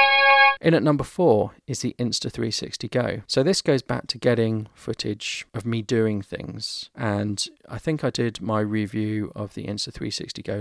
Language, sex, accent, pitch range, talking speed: English, male, British, 110-130 Hz, 170 wpm